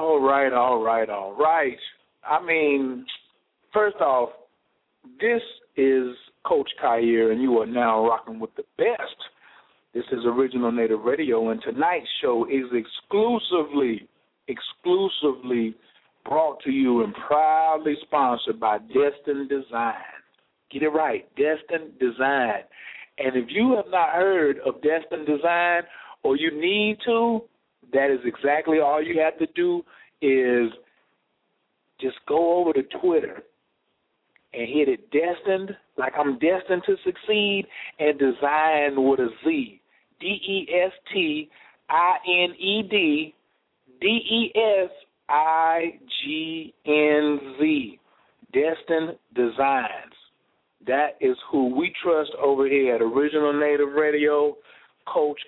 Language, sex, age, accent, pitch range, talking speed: English, male, 50-69, American, 140-210 Hz, 125 wpm